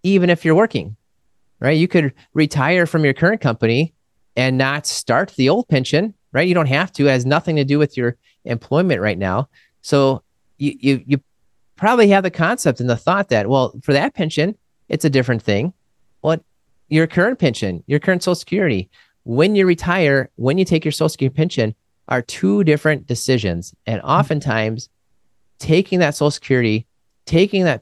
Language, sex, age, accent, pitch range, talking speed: English, male, 30-49, American, 110-155 Hz, 180 wpm